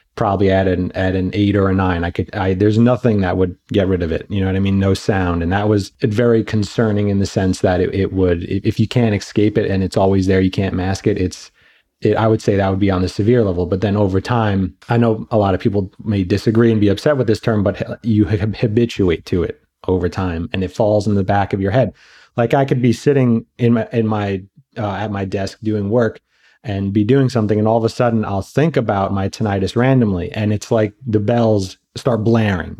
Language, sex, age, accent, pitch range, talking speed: English, male, 30-49, American, 95-115 Hz, 245 wpm